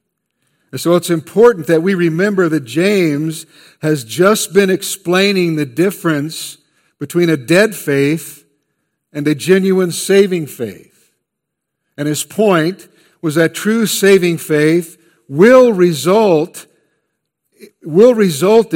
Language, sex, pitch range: English, male, 160-195 Hz